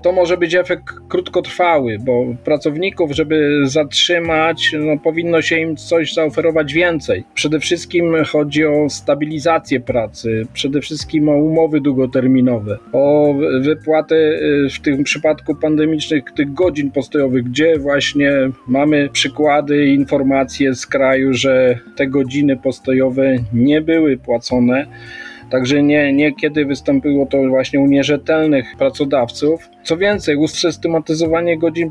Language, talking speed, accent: Polish, 120 wpm, native